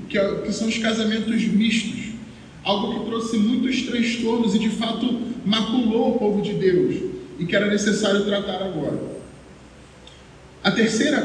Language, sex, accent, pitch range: Portuguese, male, Brazilian, 195-220 Hz